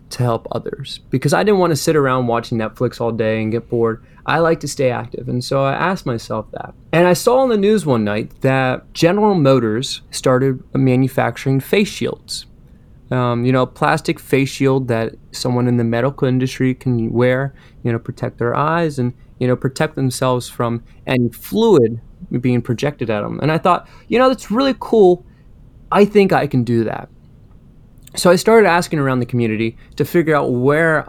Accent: American